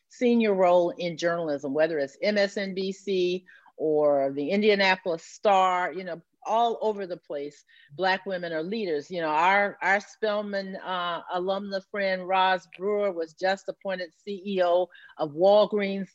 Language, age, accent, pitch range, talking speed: English, 40-59, American, 165-205 Hz, 140 wpm